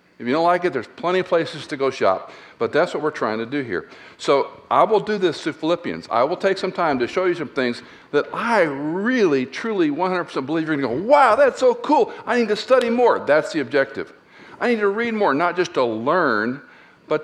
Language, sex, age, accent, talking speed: English, male, 60-79, American, 240 wpm